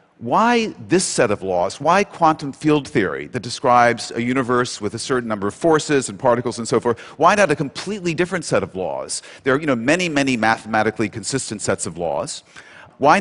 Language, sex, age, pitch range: Chinese, male, 40-59, 115-150 Hz